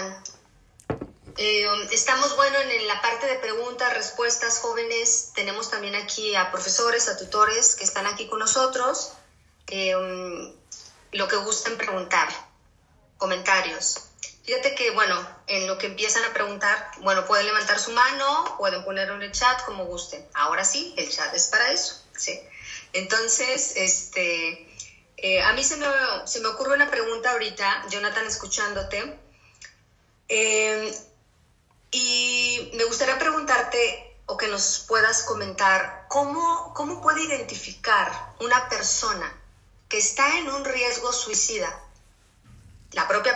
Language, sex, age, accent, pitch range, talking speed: Spanish, female, 30-49, Mexican, 195-265 Hz, 135 wpm